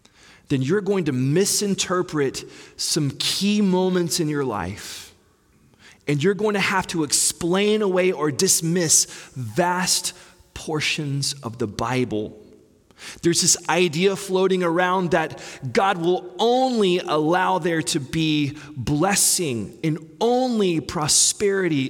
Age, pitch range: 30-49, 150-195 Hz